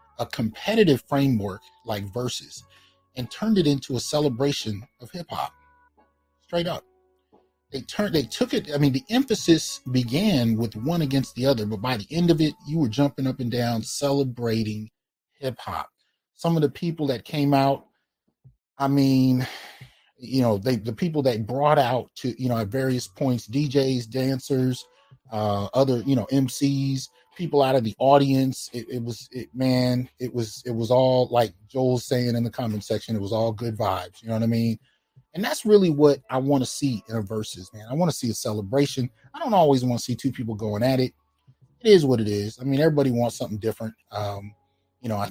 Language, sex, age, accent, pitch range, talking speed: English, male, 30-49, American, 115-140 Hz, 200 wpm